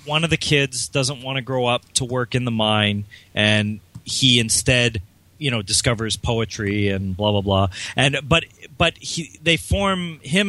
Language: English